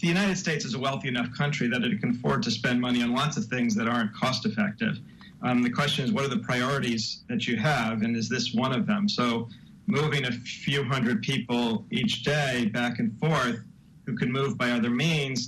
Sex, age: male, 40-59